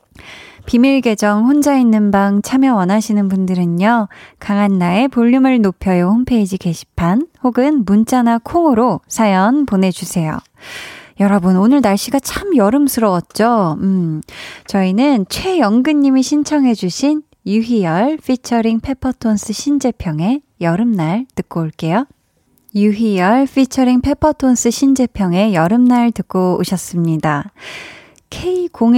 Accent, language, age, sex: native, Korean, 20-39, female